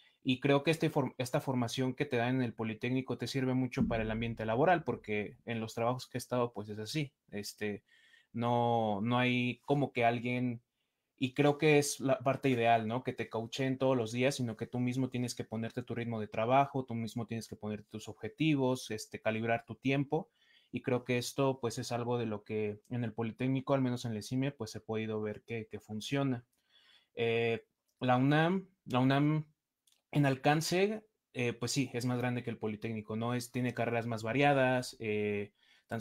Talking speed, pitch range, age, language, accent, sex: 200 wpm, 115-130 Hz, 20-39, Spanish, Mexican, male